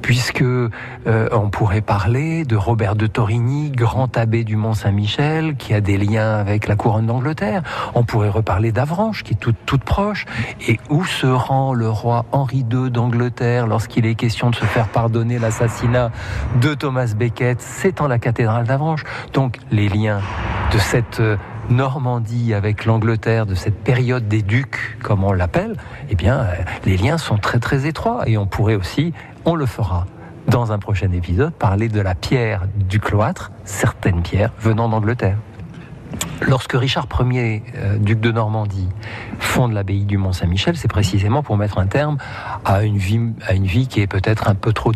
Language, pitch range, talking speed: French, 105-125 Hz, 170 wpm